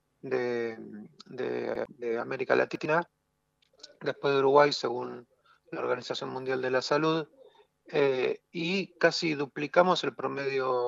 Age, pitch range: 40-59, 125-155 Hz